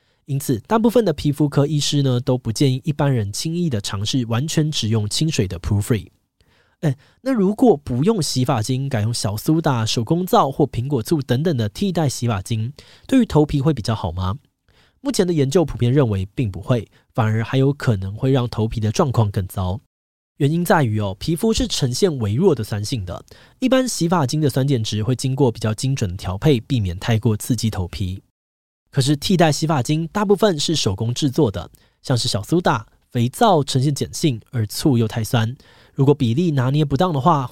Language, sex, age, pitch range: Chinese, male, 20-39, 110-150 Hz